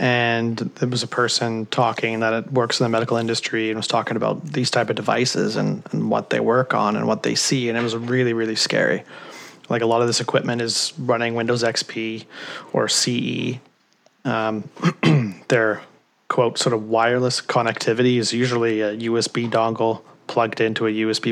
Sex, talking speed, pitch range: male, 180 wpm, 110-120 Hz